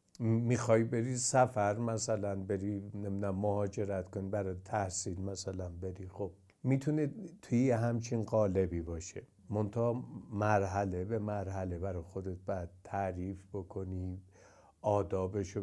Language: Persian